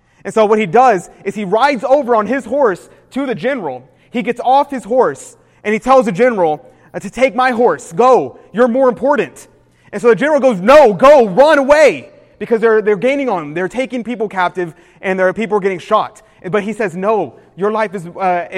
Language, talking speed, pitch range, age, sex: English, 215 wpm, 185-235 Hz, 20-39, male